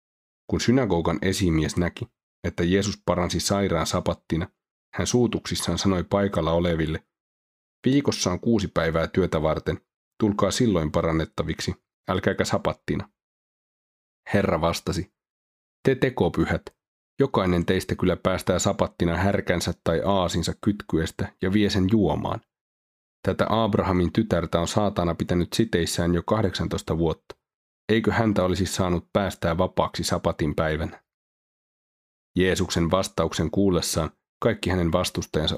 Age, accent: 30-49, native